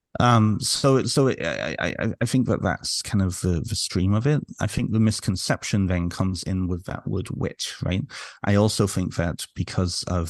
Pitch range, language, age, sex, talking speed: 85-100 Hz, English, 30-49, male, 200 wpm